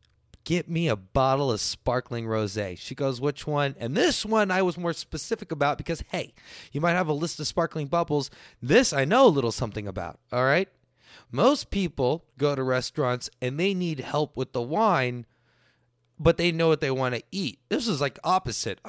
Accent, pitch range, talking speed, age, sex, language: American, 125-185 Hz, 195 wpm, 30-49, male, English